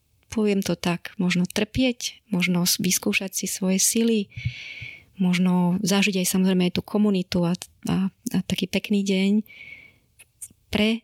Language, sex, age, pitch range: Slovak, female, 20-39, 180-200 Hz